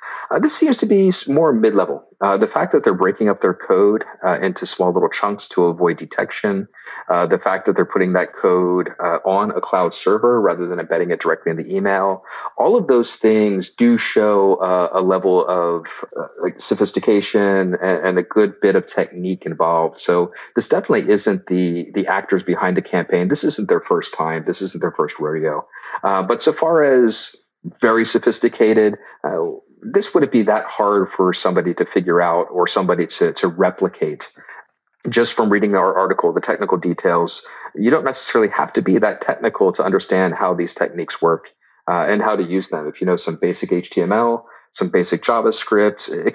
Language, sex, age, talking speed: English, male, 40-59, 190 wpm